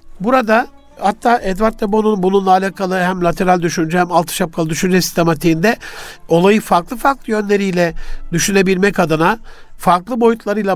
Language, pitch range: Turkish, 170-210 Hz